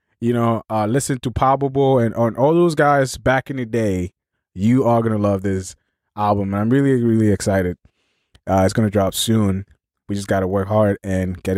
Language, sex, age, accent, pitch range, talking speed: English, male, 20-39, American, 95-135 Hz, 210 wpm